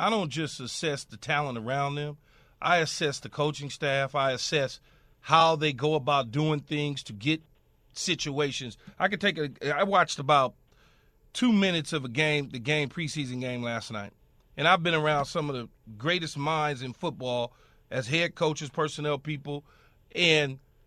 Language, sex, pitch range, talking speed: English, male, 145-210 Hz, 170 wpm